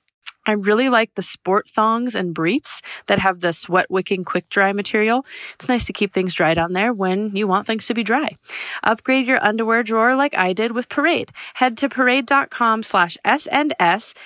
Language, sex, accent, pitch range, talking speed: English, female, American, 195-250 Hz, 175 wpm